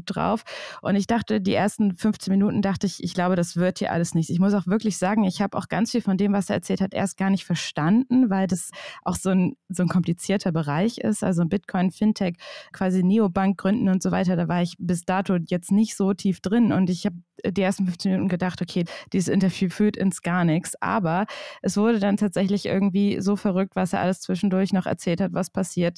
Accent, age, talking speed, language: German, 20-39, 225 wpm, German